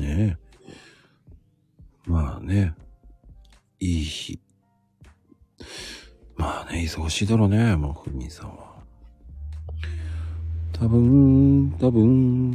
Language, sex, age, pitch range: Japanese, male, 50-69, 80-115 Hz